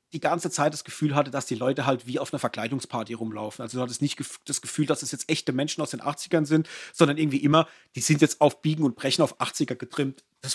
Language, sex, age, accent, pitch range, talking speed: German, male, 30-49, German, 135-180 Hz, 250 wpm